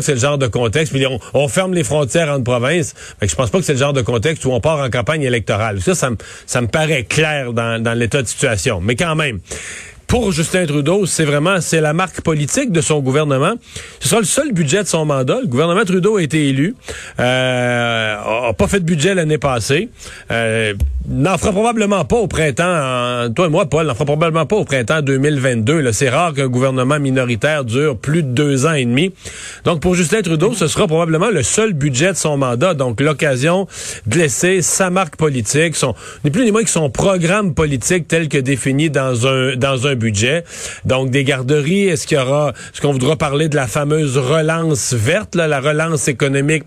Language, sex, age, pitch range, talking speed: French, male, 40-59, 130-175 Hz, 215 wpm